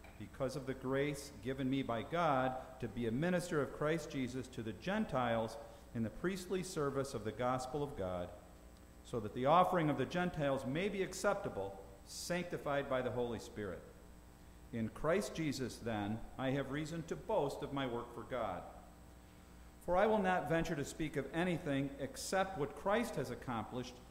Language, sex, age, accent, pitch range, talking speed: English, male, 50-69, American, 110-160 Hz, 175 wpm